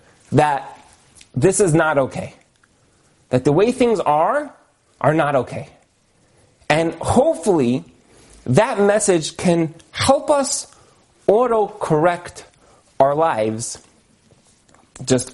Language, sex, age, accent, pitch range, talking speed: English, male, 30-49, American, 130-180 Hz, 95 wpm